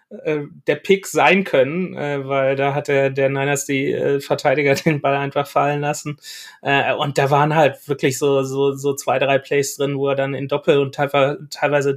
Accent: German